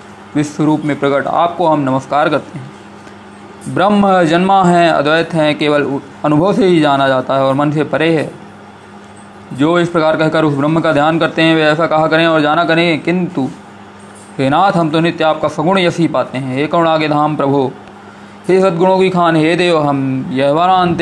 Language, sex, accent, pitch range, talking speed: Hindi, male, native, 145-180 Hz, 190 wpm